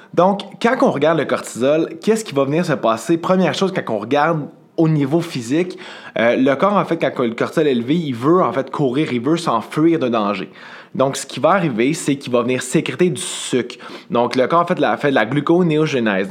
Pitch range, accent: 125-175 Hz, Canadian